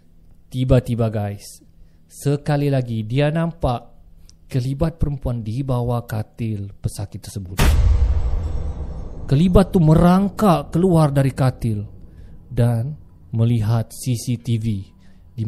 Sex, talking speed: male, 90 wpm